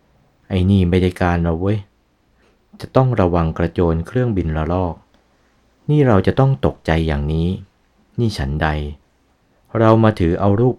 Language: Thai